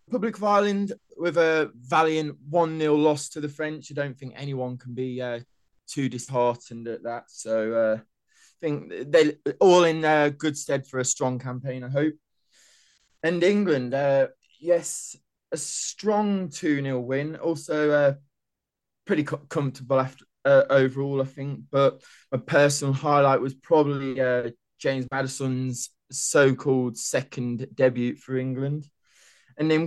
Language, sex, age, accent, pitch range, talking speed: English, male, 20-39, British, 125-150 Hz, 145 wpm